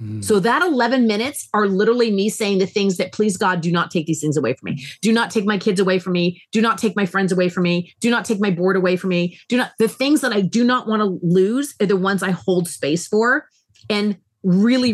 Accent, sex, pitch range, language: American, female, 170-220 Hz, English